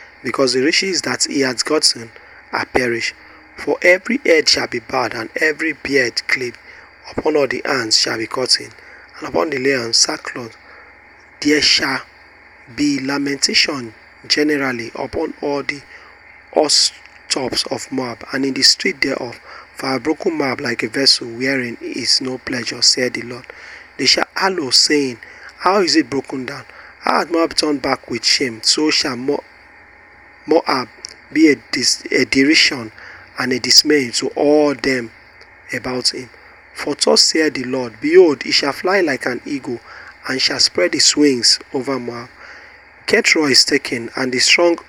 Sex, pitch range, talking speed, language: male, 130-160 Hz, 160 wpm, English